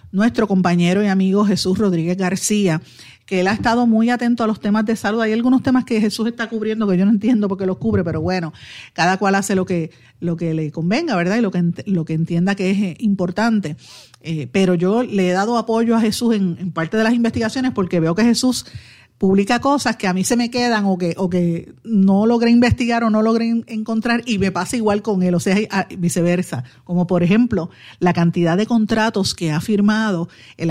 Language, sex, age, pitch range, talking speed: Spanish, female, 50-69, 170-220 Hz, 215 wpm